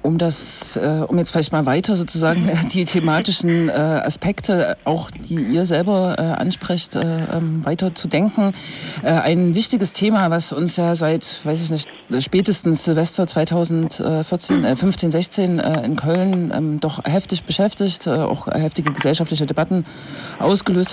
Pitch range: 155-180 Hz